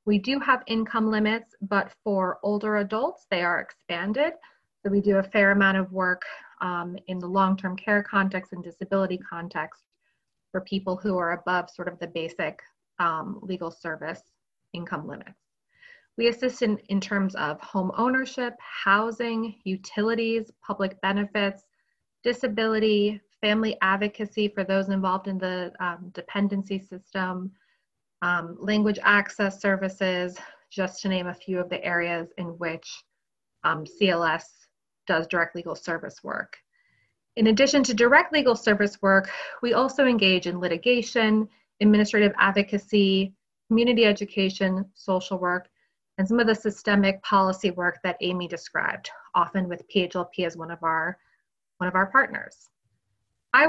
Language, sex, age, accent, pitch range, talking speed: English, female, 30-49, American, 180-220 Hz, 140 wpm